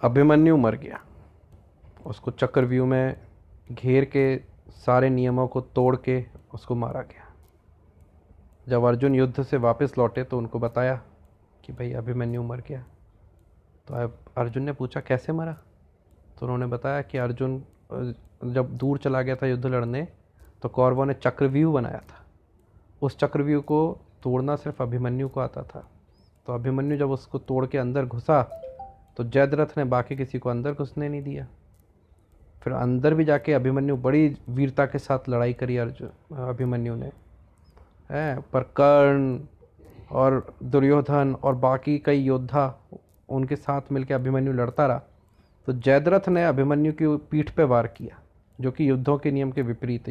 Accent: native